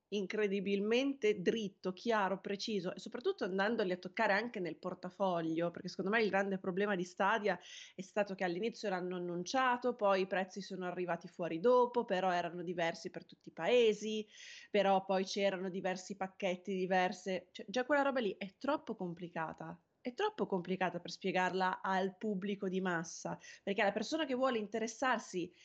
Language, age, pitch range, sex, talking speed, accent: Italian, 20-39, 180-215 Hz, female, 160 wpm, native